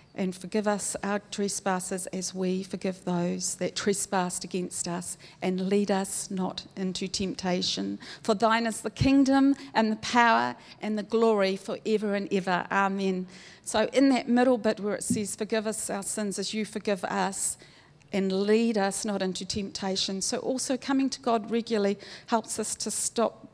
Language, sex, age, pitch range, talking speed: English, female, 50-69, 185-220 Hz, 170 wpm